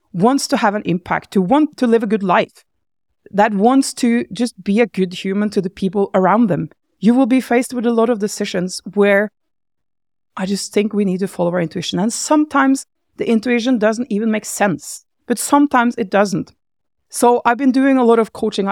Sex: female